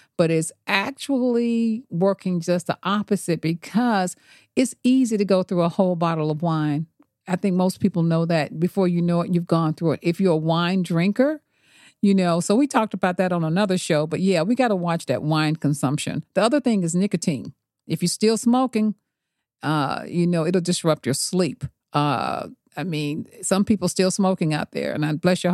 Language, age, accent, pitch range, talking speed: English, 50-69, American, 165-200 Hz, 200 wpm